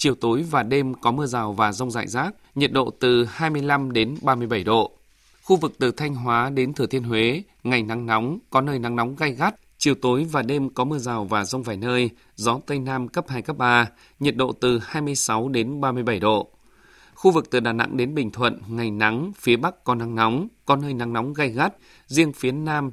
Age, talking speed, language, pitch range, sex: 20-39, 220 wpm, Vietnamese, 120-145 Hz, male